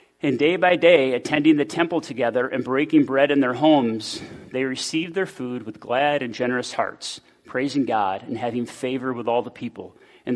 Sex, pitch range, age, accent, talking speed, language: male, 125-175 Hz, 30-49, American, 190 wpm, English